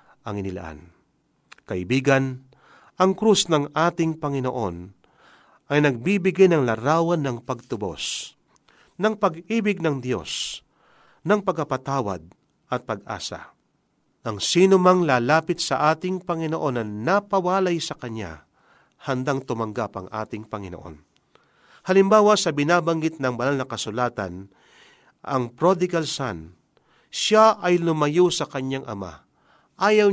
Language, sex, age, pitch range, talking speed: Filipino, male, 40-59, 115-170 Hz, 110 wpm